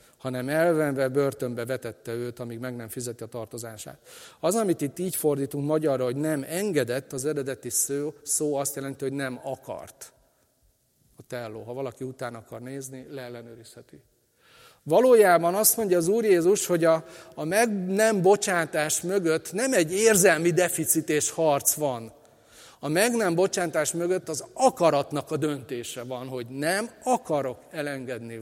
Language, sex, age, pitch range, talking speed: Hungarian, male, 40-59, 130-160 Hz, 150 wpm